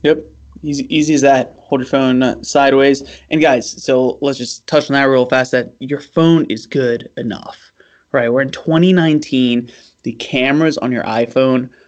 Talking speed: 180 wpm